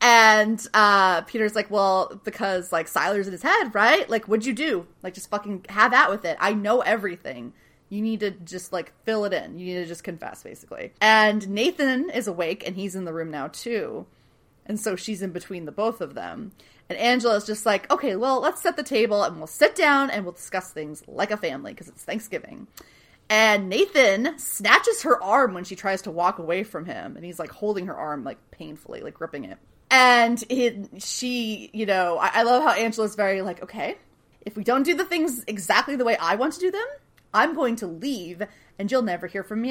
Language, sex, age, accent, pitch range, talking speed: English, female, 20-39, American, 180-235 Hz, 220 wpm